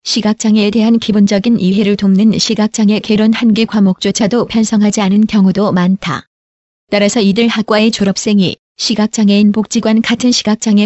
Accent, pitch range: native, 195-225 Hz